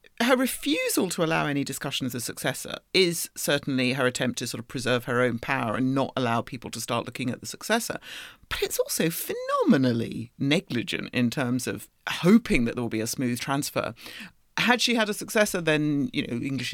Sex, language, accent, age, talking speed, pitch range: female, English, British, 40-59, 195 wpm, 125-185 Hz